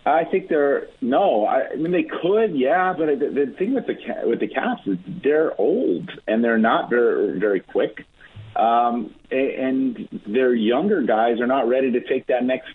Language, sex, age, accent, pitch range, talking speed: English, male, 40-59, American, 105-135 Hz, 195 wpm